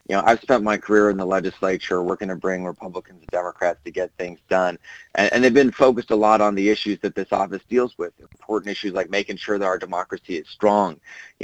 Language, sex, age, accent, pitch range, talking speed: English, male, 30-49, American, 90-100 Hz, 235 wpm